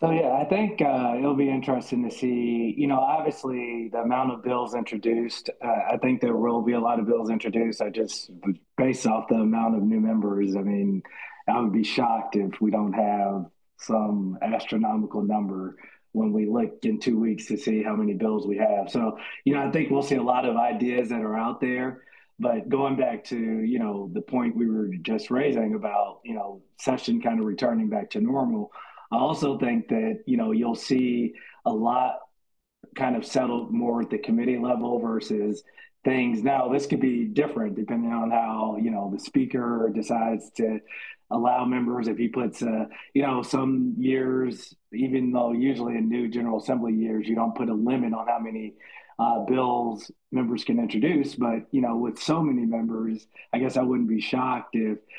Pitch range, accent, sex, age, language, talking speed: 110-130 Hz, American, male, 30-49, English, 195 wpm